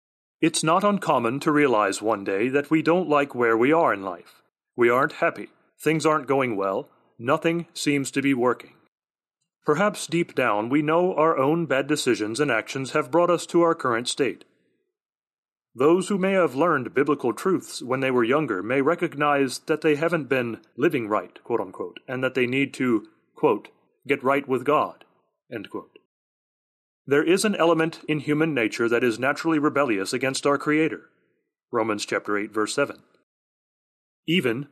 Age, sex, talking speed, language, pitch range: 40-59, male, 170 wpm, English, 130-165 Hz